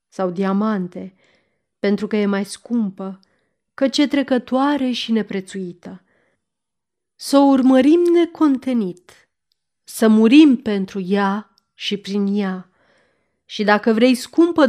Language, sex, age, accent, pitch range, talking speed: Romanian, female, 30-49, native, 195-260 Hz, 110 wpm